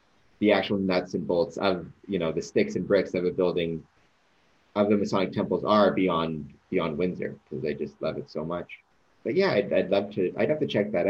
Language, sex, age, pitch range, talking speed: English, male, 30-49, 85-115 Hz, 220 wpm